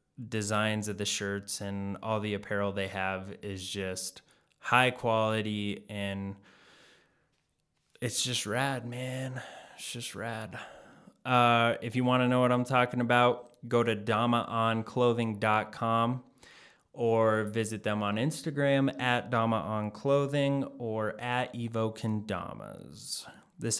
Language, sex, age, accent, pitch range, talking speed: English, male, 20-39, American, 100-125 Hz, 115 wpm